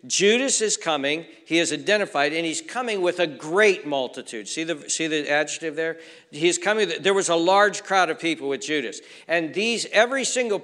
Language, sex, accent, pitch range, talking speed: English, male, American, 130-165 Hz, 190 wpm